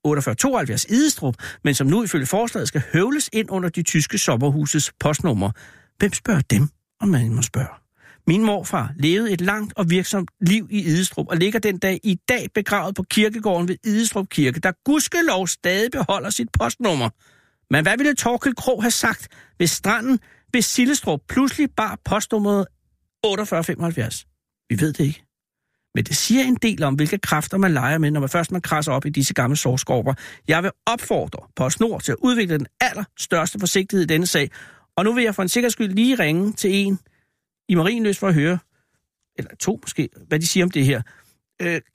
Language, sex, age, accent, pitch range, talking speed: Danish, male, 60-79, native, 145-215 Hz, 185 wpm